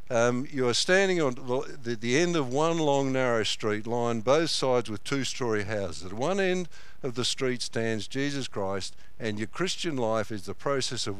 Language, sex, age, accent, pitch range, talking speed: English, male, 60-79, Australian, 110-140 Hz, 200 wpm